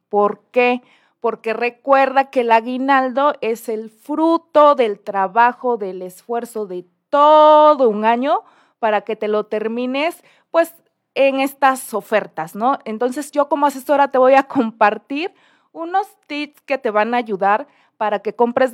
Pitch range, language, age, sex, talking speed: 210-275 Hz, Spanish, 30-49, female, 145 wpm